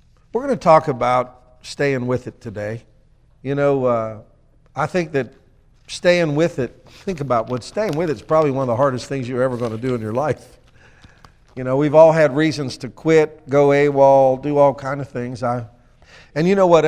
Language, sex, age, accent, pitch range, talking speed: English, male, 50-69, American, 120-145 Hz, 205 wpm